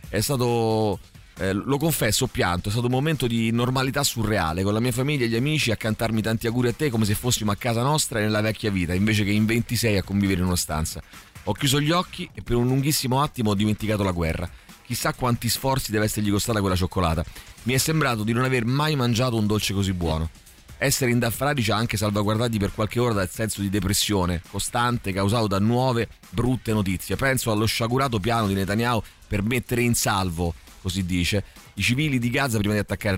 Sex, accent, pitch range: male, native, 100-130 Hz